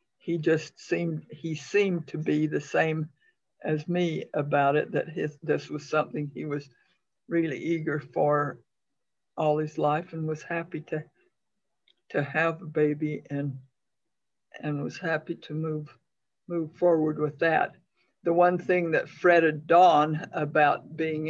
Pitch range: 155-180 Hz